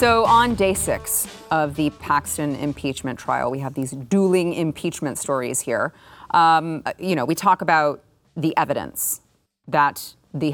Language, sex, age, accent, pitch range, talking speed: English, female, 30-49, American, 145-185 Hz, 150 wpm